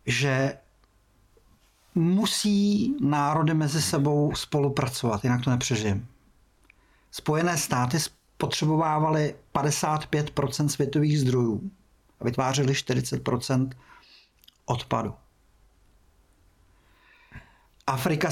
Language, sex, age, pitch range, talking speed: Czech, male, 50-69, 105-145 Hz, 65 wpm